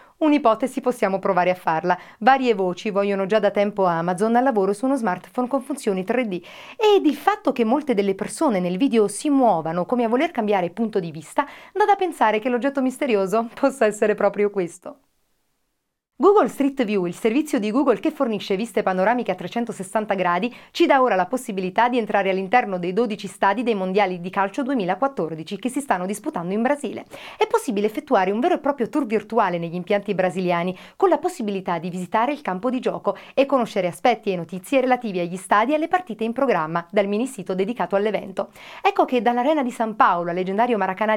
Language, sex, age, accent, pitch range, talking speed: Italian, female, 40-59, native, 190-265 Hz, 190 wpm